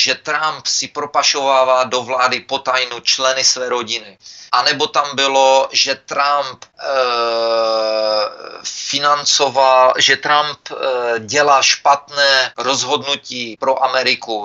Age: 30-49